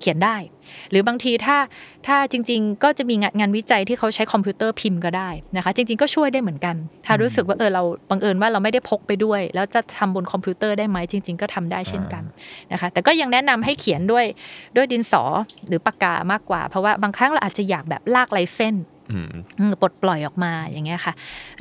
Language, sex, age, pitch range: Thai, female, 20-39, 180-225 Hz